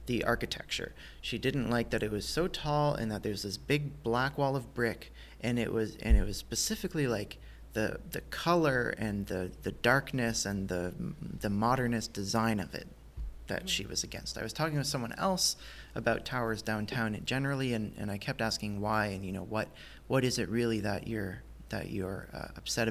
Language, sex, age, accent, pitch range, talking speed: English, male, 30-49, American, 105-135 Hz, 195 wpm